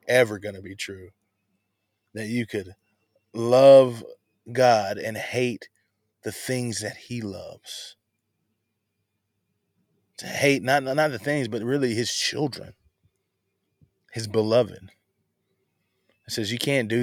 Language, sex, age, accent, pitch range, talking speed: English, male, 20-39, American, 105-135 Hz, 120 wpm